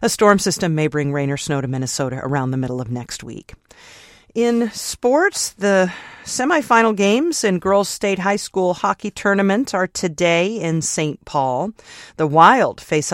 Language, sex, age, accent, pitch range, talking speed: English, female, 40-59, American, 145-195 Hz, 165 wpm